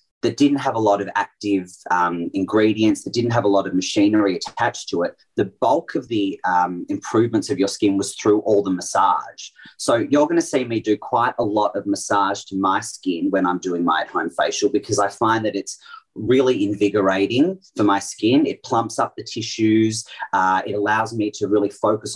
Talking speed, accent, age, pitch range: 205 wpm, Australian, 30-49, 95-120 Hz